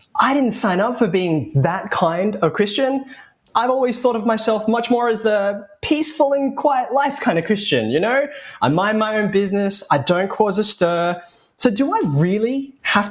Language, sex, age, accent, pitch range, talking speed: English, male, 20-39, Australian, 160-230 Hz, 195 wpm